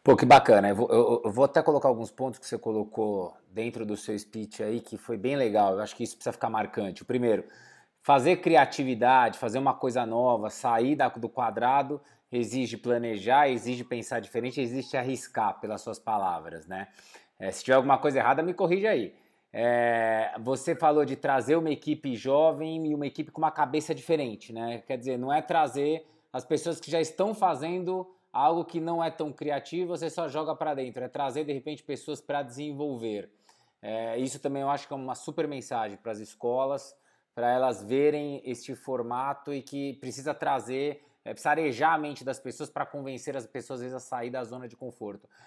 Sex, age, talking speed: male, 20-39, 195 wpm